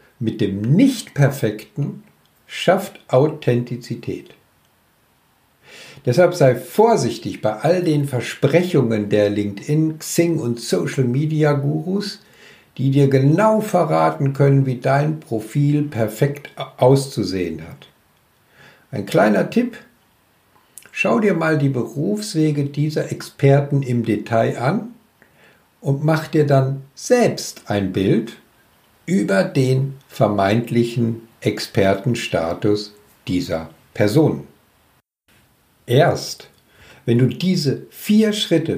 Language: German